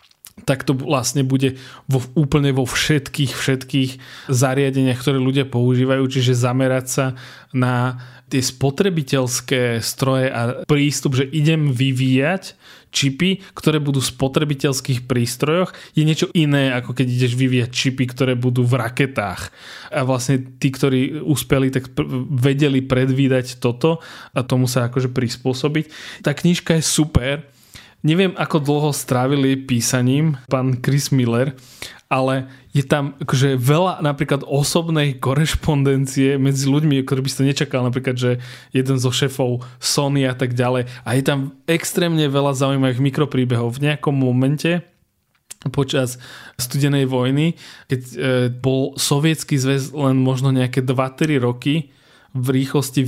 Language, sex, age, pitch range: Slovak, male, 20-39, 130-145 Hz